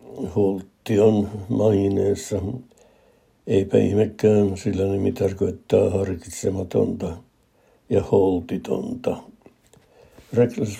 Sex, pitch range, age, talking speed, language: male, 95-110 Hz, 60-79, 60 wpm, Finnish